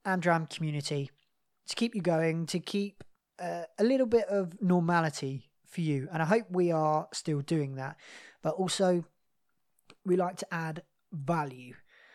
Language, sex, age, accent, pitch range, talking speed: English, male, 20-39, British, 145-180 Hz, 155 wpm